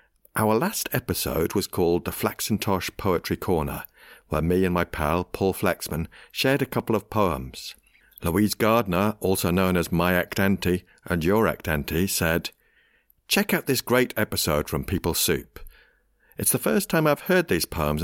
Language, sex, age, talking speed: English, male, 50-69, 160 wpm